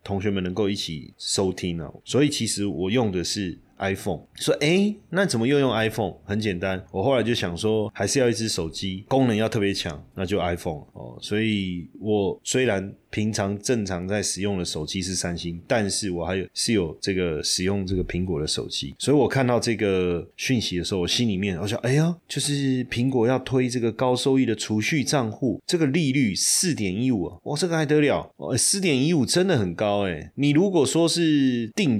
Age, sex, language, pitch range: 20-39, male, Chinese, 95-135 Hz